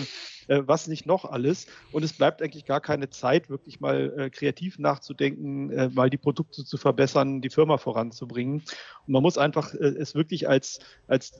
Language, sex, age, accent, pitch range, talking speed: German, male, 40-59, German, 135-155 Hz, 165 wpm